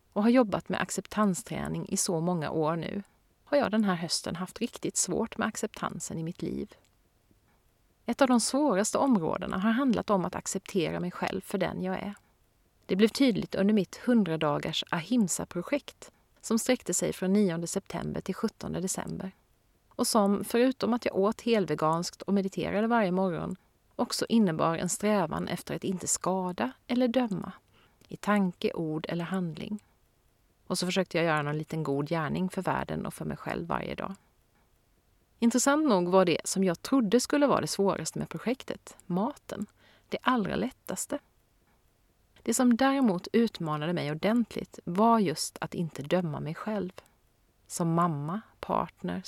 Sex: female